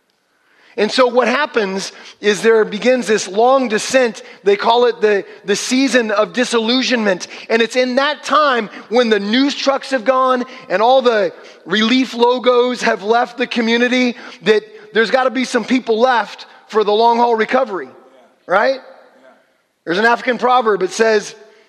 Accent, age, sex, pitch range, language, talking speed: American, 30-49, male, 195-245 Hz, English, 160 wpm